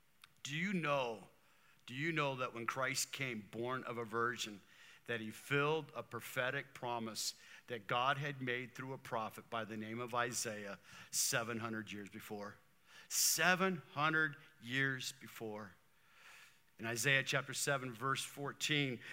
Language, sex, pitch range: English, male, 120-165 Hz